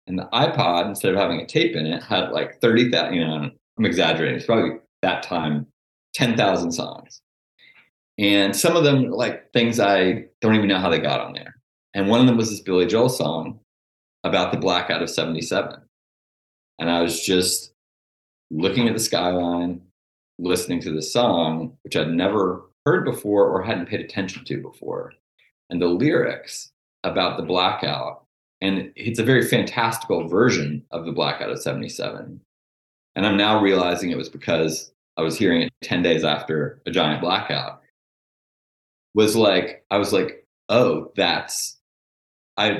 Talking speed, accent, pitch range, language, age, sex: 160 wpm, American, 80-110 Hz, English, 30-49, male